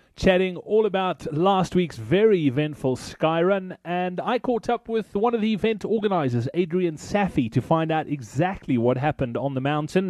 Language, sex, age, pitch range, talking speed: English, male, 30-49, 150-200 Hz, 170 wpm